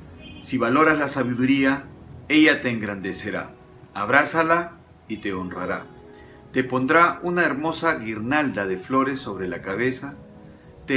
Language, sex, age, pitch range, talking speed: Spanish, male, 40-59, 115-155 Hz, 120 wpm